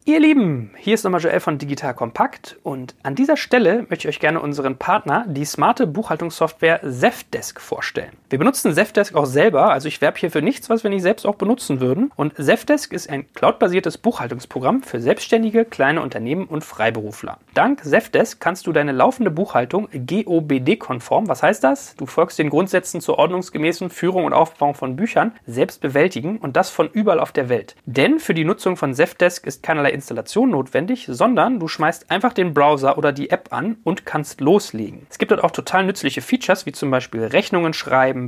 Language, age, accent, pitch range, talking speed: German, 30-49, German, 140-200 Hz, 190 wpm